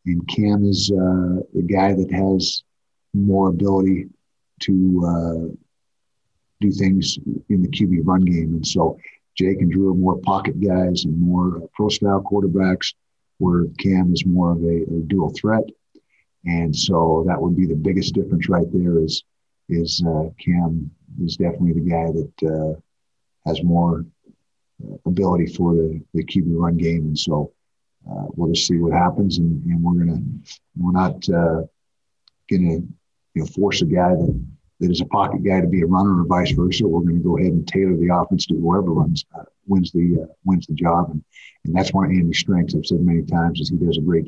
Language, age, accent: English, 50-69, American